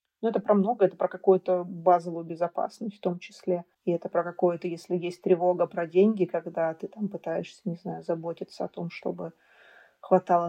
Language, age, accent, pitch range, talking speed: Russian, 30-49, native, 175-205 Hz, 185 wpm